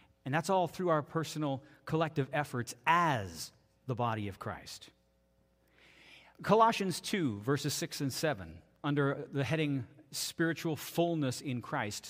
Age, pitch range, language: 40-59, 130-185 Hz, English